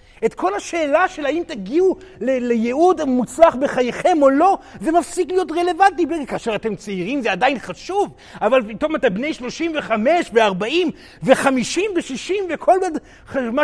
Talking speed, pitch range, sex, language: 135 wpm, 230-330 Hz, male, Hebrew